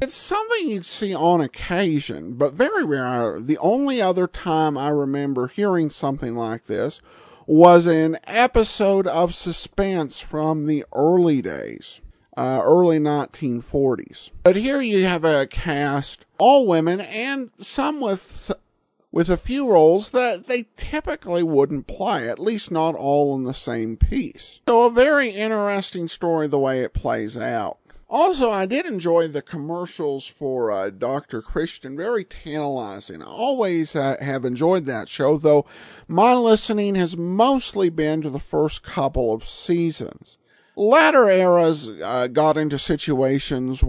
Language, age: English, 50-69